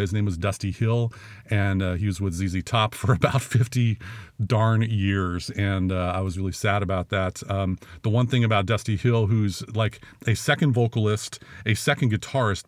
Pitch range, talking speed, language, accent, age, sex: 100-120 Hz, 190 wpm, English, American, 40-59, male